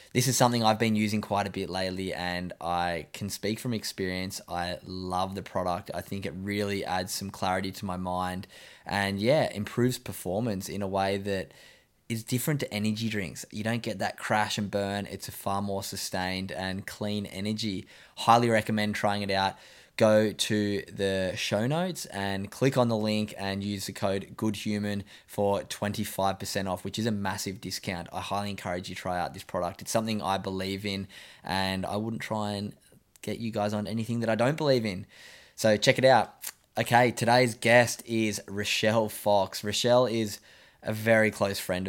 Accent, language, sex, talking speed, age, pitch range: Australian, English, male, 190 wpm, 10-29, 95-110 Hz